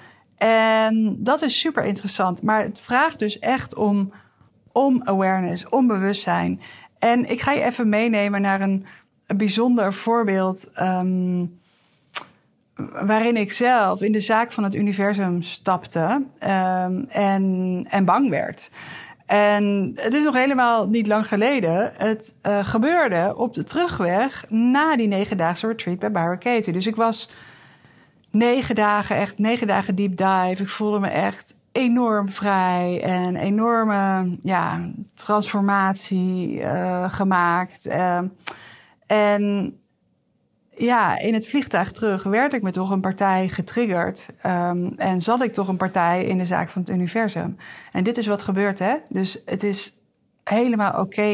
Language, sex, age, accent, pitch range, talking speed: Dutch, female, 50-69, Dutch, 185-220 Hz, 140 wpm